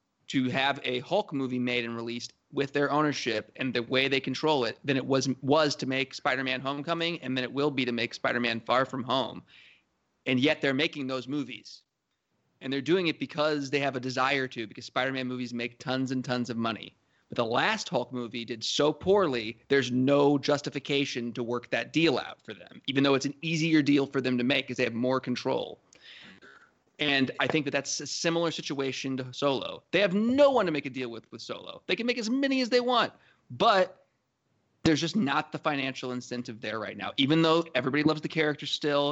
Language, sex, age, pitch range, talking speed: English, male, 30-49, 130-155 Hz, 215 wpm